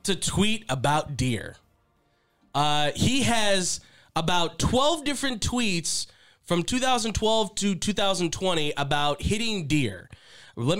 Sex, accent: male, American